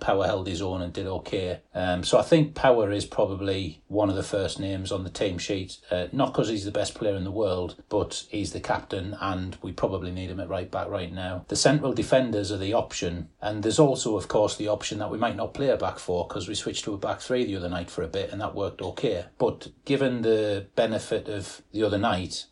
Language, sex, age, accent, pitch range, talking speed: English, male, 40-59, British, 90-105 Hz, 245 wpm